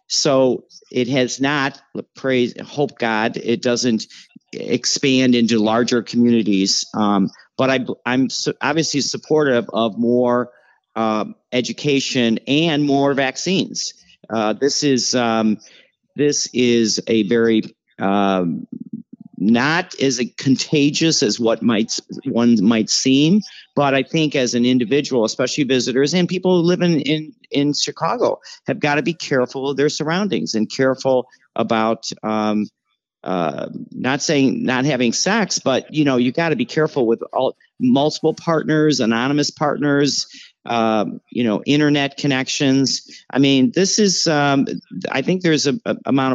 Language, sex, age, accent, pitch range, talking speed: English, male, 50-69, American, 120-150 Hz, 140 wpm